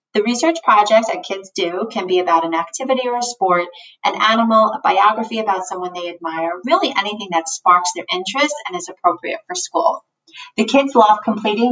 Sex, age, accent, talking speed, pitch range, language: female, 30-49, American, 190 wpm, 190-260 Hz, English